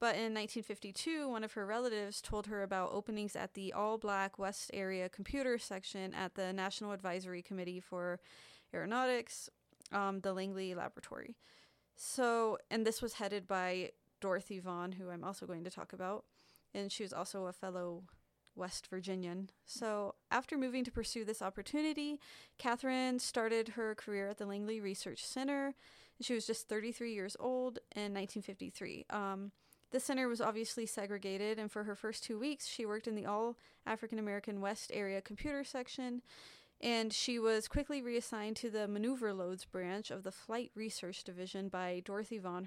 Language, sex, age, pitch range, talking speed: English, female, 30-49, 190-230 Hz, 165 wpm